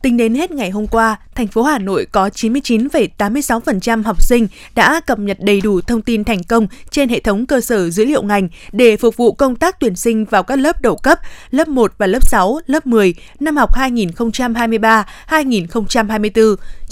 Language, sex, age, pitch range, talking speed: Vietnamese, female, 20-39, 215-255 Hz, 190 wpm